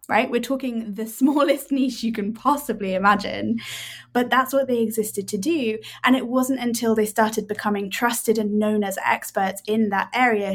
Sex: female